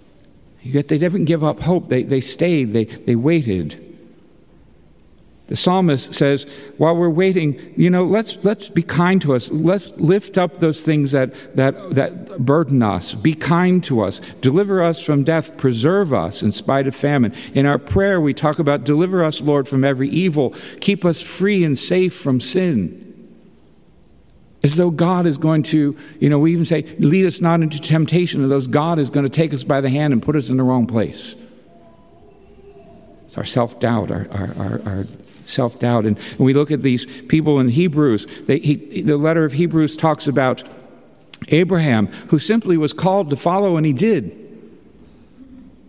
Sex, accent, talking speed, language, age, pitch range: male, American, 175 wpm, English, 60-79, 135-175 Hz